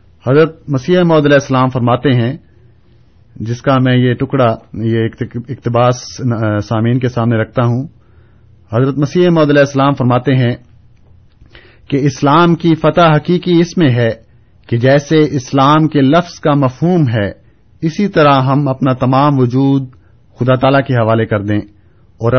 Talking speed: 135 wpm